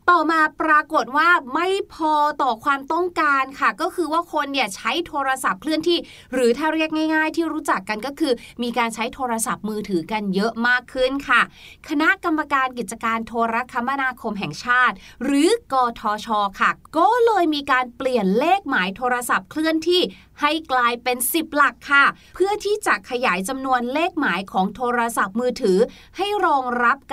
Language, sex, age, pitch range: Thai, female, 30-49, 225-310 Hz